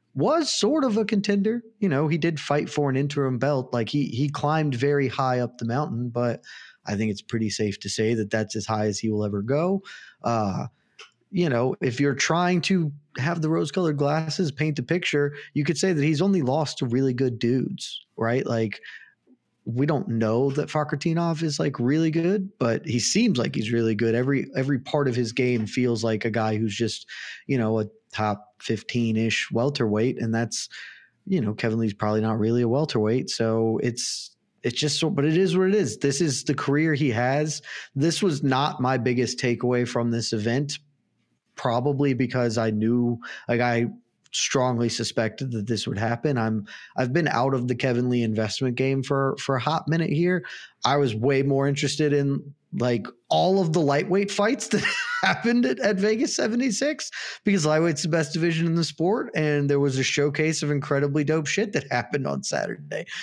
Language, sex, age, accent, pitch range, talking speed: English, male, 20-39, American, 120-160 Hz, 195 wpm